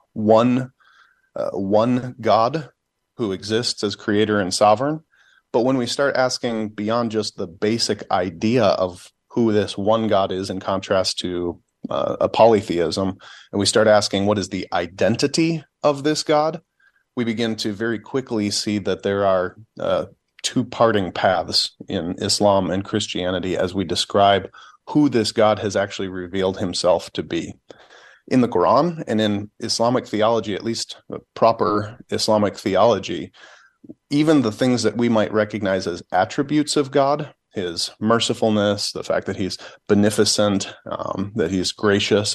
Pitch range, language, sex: 100-115 Hz, English, male